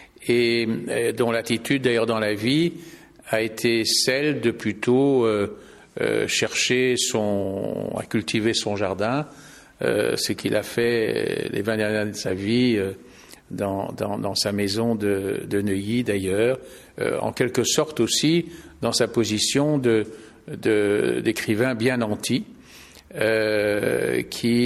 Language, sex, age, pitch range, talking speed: French, male, 50-69, 110-145 Hz, 140 wpm